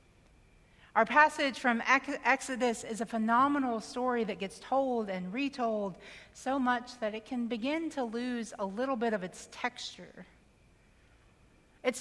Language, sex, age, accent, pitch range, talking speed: English, female, 40-59, American, 195-250 Hz, 140 wpm